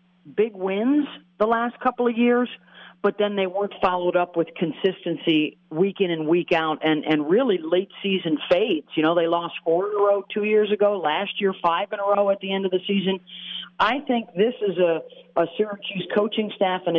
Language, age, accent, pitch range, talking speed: English, 50-69, American, 165-200 Hz, 210 wpm